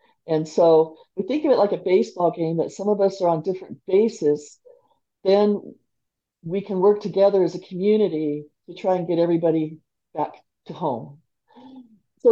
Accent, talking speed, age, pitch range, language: American, 170 wpm, 50-69, 165-200 Hz, English